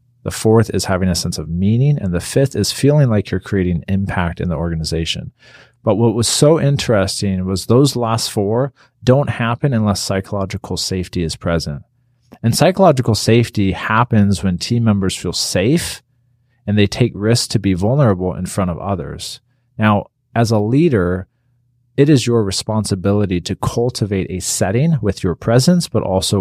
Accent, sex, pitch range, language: American, male, 90-120 Hz, English